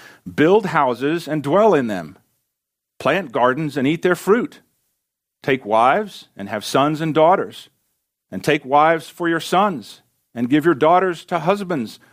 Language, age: English, 50-69